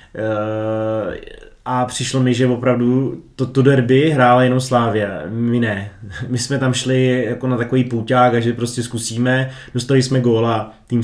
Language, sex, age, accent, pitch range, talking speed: Czech, male, 20-39, native, 120-130 Hz, 165 wpm